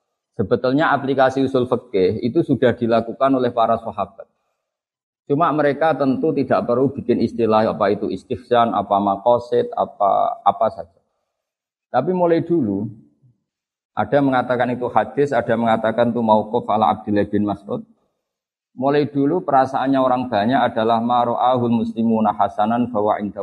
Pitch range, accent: 110-135 Hz, native